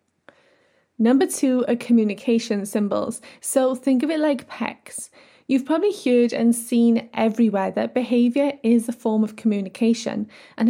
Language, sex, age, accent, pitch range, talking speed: English, female, 10-29, British, 220-260 Hz, 140 wpm